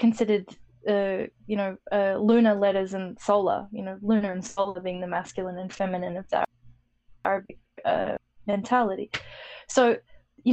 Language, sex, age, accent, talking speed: English, female, 10-29, Australian, 135 wpm